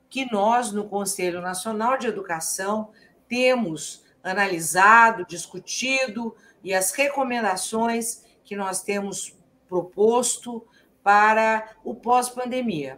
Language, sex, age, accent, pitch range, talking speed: Portuguese, female, 50-69, Brazilian, 185-235 Hz, 95 wpm